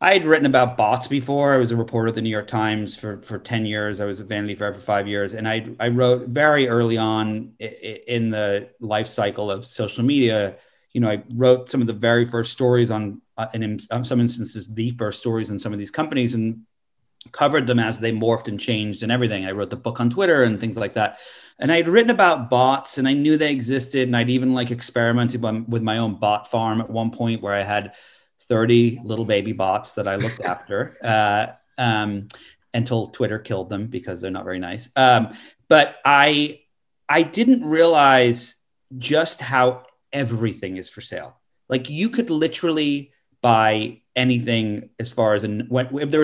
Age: 30-49